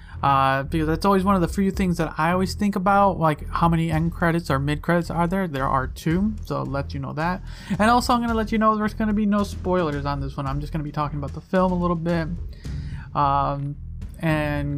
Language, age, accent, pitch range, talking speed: English, 30-49, American, 155-200 Hz, 250 wpm